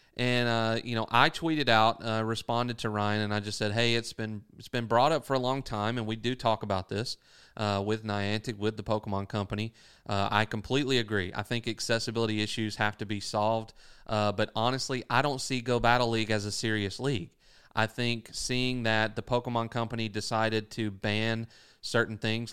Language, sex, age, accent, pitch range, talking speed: English, male, 30-49, American, 105-120 Hz, 200 wpm